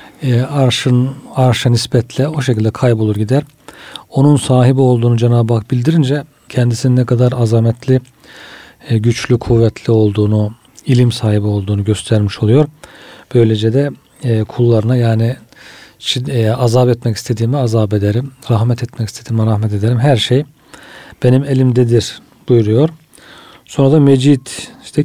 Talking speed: 115 wpm